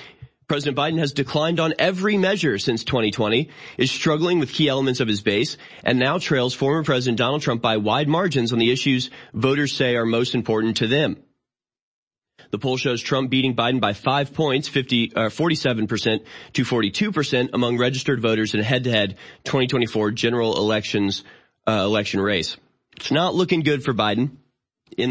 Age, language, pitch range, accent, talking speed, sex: 30-49, English, 105-135 Hz, American, 170 wpm, male